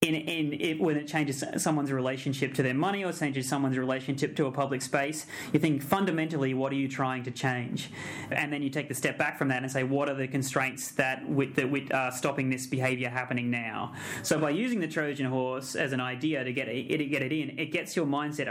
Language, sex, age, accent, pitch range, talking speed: English, male, 20-39, Australian, 130-150 Hz, 235 wpm